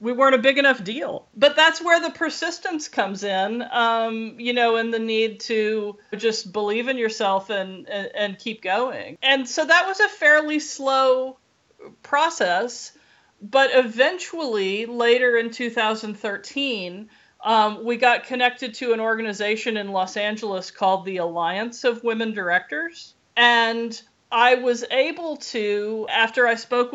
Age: 40-59